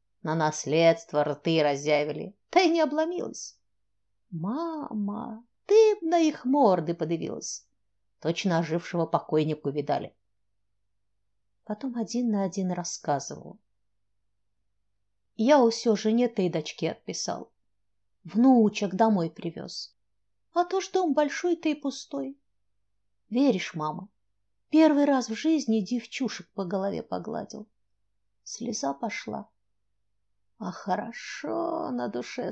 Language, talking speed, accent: Russian, 105 wpm, native